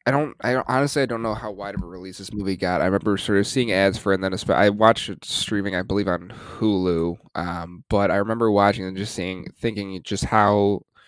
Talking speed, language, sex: 235 wpm, English, male